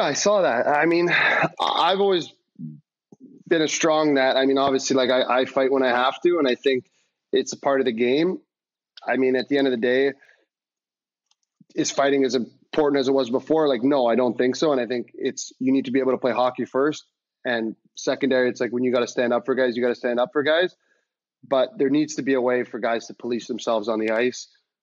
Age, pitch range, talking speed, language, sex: 20-39, 120-140 Hz, 245 wpm, English, male